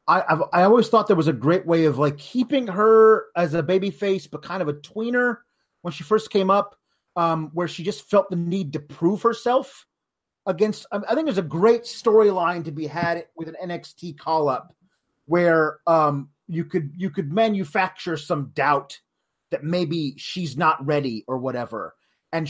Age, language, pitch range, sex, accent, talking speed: 30-49, English, 155-195 Hz, male, American, 185 wpm